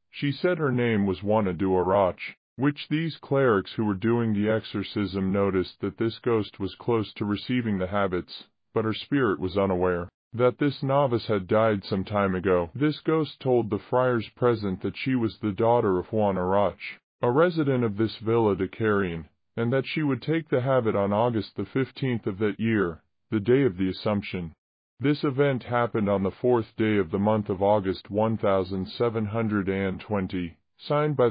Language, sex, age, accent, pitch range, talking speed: Spanish, female, 30-49, American, 95-120 Hz, 180 wpm